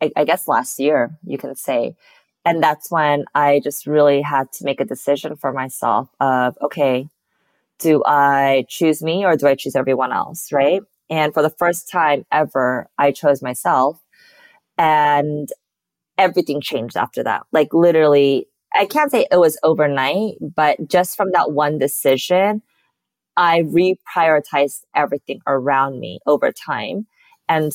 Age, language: 20-39, English